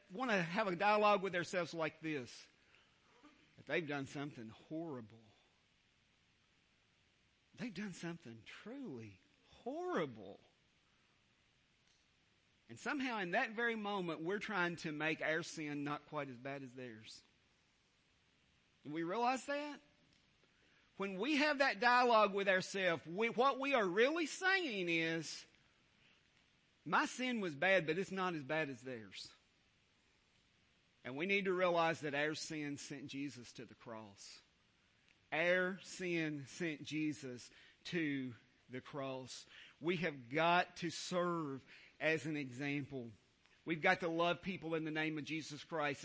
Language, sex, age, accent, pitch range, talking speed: English, male, 40-59, American, 145-205 Hz, 135 wpm